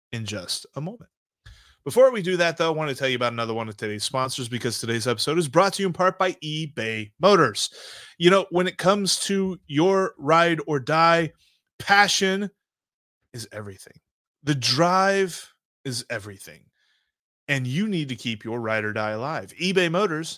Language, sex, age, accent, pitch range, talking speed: English, male, 30-49, American, 125-185 Hz, 180 wpm